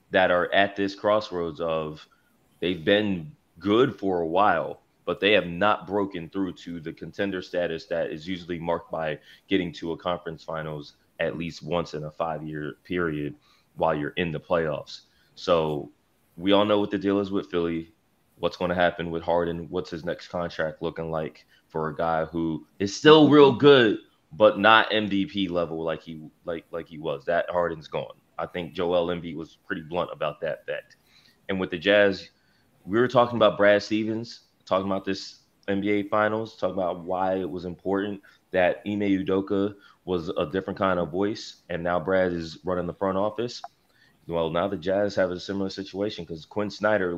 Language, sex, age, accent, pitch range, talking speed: English, male, 20-39, American, 85-105 Hz, 185 wpm